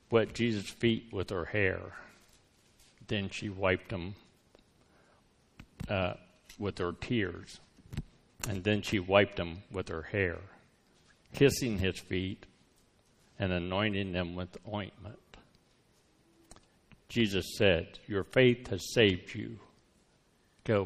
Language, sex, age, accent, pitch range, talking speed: English, male, 60-79, American, 95-115 Hz, 105 wpm